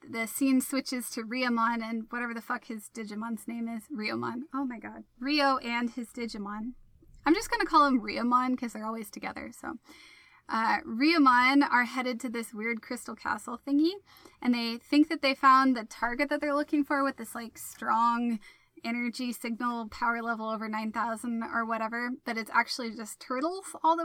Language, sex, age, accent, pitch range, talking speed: English, female, 10-29, American, 230-275 Hz, 185 wpm